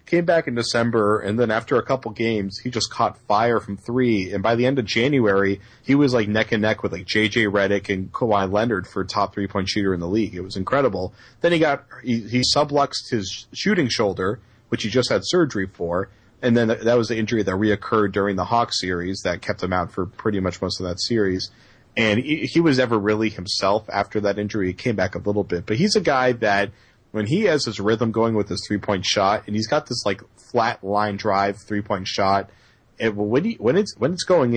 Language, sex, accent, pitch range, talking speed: English, male, American, 100-120 Hz, 225 wpm